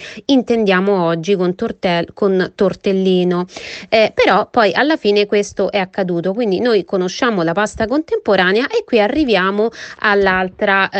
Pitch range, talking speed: 185-230 Hz, 125 wpm